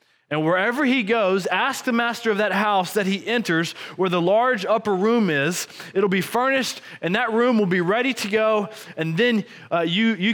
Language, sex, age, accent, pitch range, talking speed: English, male, 20-39, American, 185-235 Hz, 205 wpm